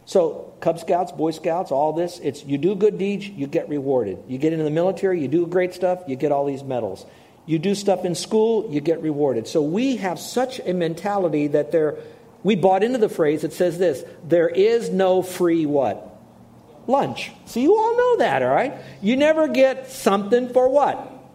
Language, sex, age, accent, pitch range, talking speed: English, male, 50-69, American, 155-220 Hz, 200 wpm